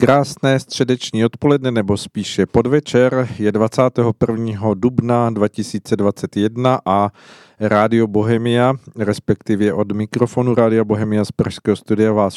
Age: 50-69